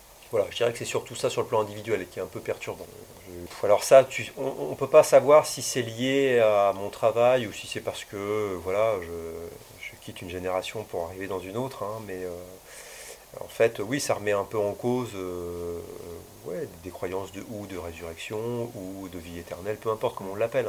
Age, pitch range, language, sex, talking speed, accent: 40-59, 95-120 Hz, French, male, 220 wpm, French